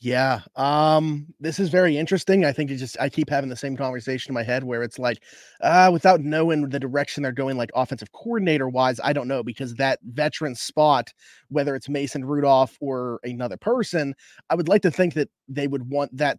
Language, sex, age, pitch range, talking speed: English, male, 30-49, 125-150 Hz, 210 wpm